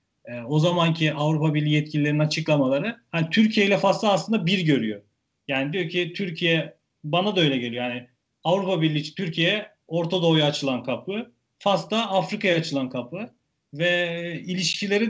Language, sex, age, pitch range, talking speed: Turkish, male, 40-59, 140-180 Hz, 145 wpm